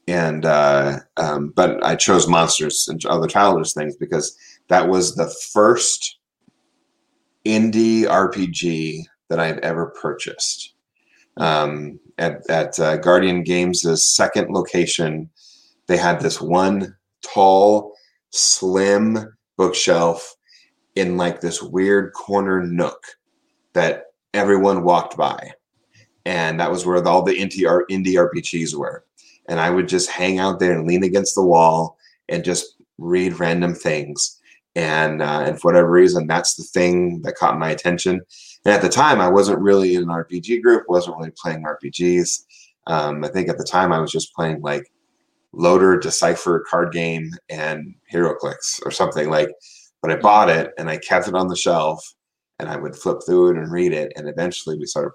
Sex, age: male, 30-49